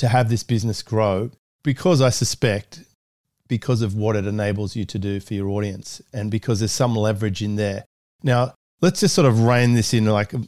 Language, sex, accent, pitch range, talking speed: English, male, Australian, 105-130 Hz, 200 wpm